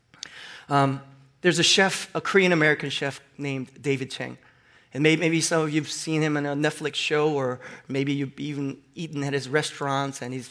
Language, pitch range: English, 135-175 Hz